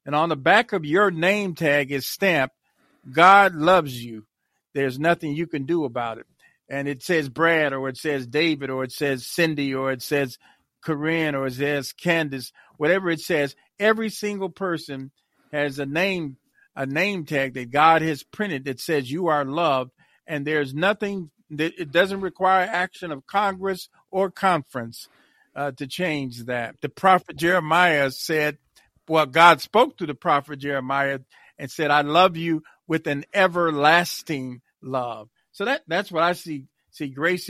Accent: American